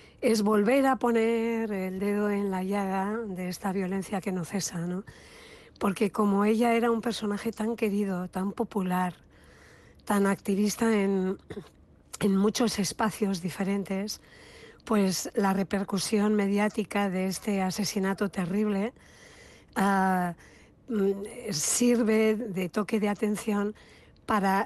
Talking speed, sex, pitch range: 115 wpm, female, 195-225 Hz